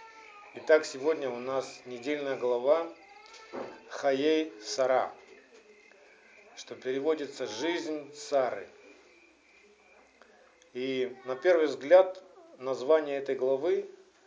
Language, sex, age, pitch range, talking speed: Russian, male, 50-69, 135-205 Hz, 80 wpm